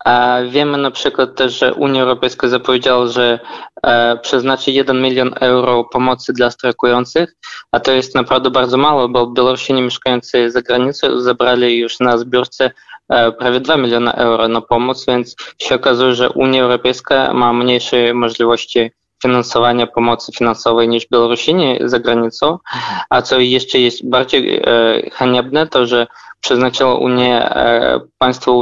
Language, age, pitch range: Polish, 20-39, 120-125 Hz